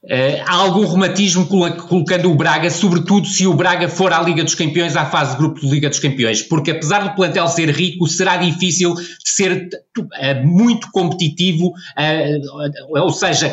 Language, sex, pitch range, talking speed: Portuguese, male, 160-185 Hz, 180 wpm